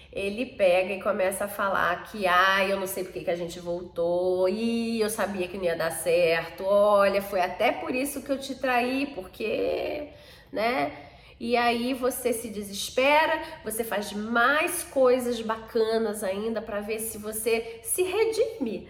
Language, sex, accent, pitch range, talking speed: Portuguese, female, Brazilian, 200-260 Hz, 170 wpm